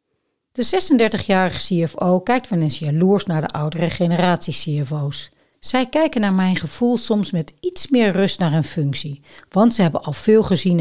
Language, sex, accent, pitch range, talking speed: Dutch, female, Dutch, 155-210 Hz, 170 wpm